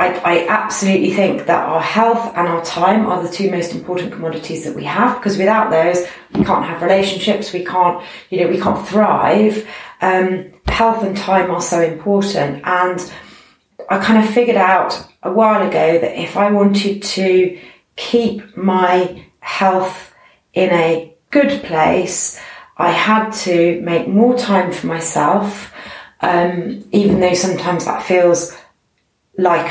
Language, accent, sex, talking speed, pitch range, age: English, British, female, 155 wpm, 170-195 Hz, 30-49